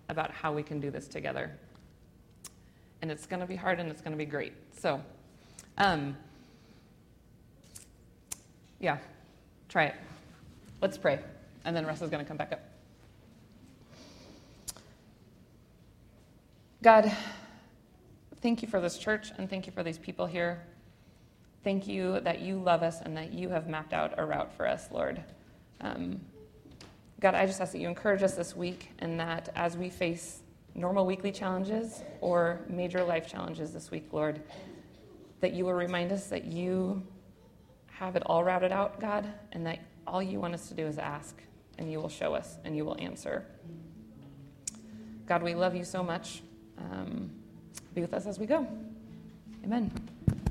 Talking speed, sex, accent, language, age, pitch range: 165 wpm, female, American, English, 30-49, 150-190 Hz